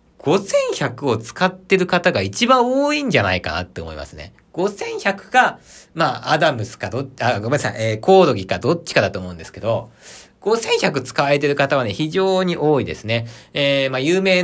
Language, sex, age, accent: Japanese, male, 40-59, native